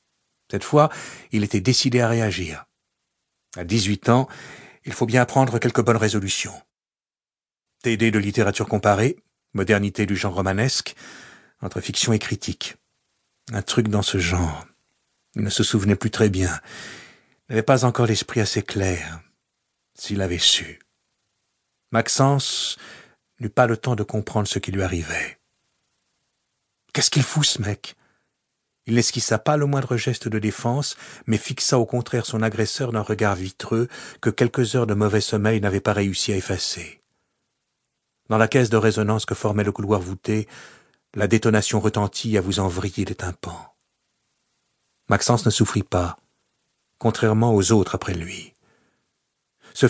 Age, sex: 50-69, male